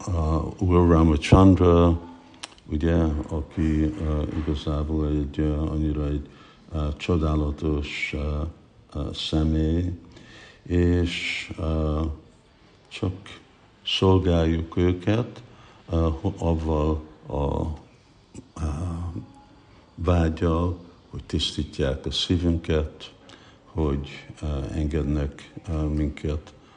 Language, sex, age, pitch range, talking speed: Hungarian, male, 60-79, 75-90 Hz, 75 wpm